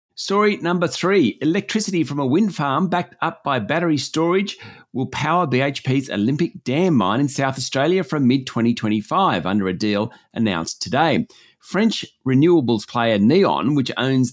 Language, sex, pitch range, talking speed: English, male, 120-170 Hz, 145 wpm